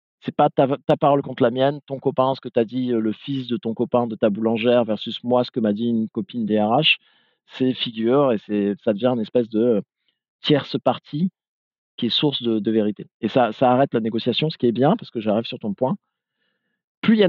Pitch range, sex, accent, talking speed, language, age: 115-145 Hz, male, French, 245 wpm, French, 40-59